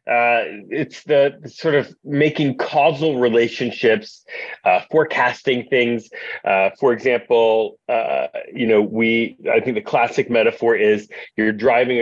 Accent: American